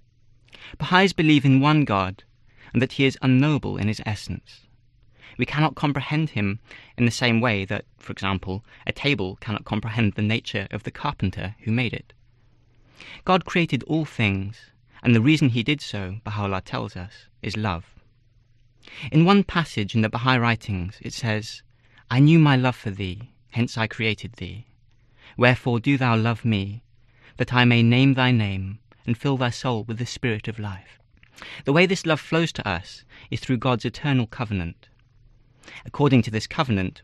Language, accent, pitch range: English, British, 110-135 Hz